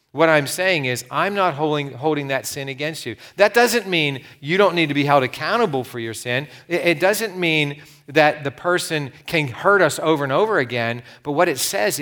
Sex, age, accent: male, 40-59, American